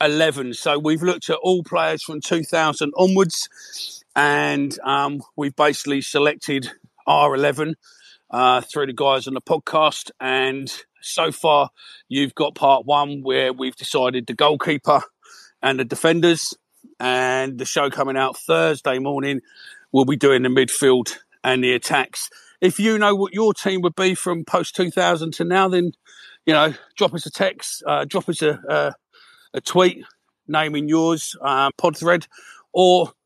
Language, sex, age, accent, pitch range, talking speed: English, male, 40-59, British, 140-175 Hz, 155 wpm